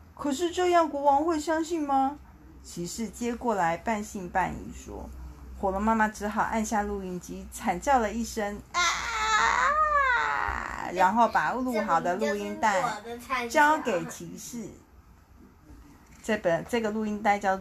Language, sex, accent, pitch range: Chinese, female, native, 180-270 Hz